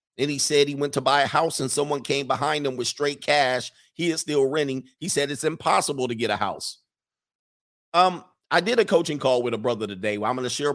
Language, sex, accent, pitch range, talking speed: English, male, American, 115-140 Hz, 240 wpm